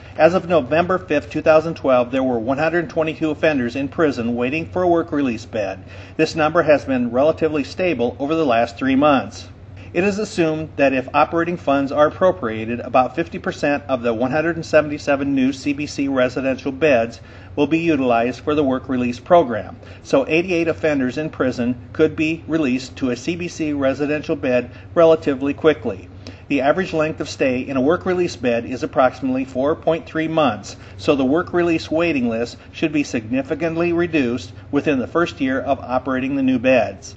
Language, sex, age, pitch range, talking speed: English, male, 50-69, 125-160 Hz, 165 wpm